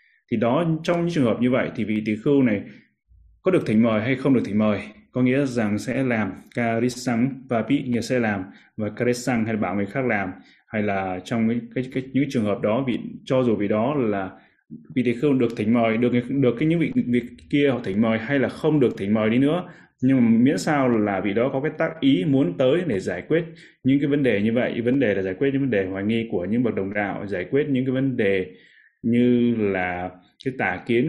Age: 20-39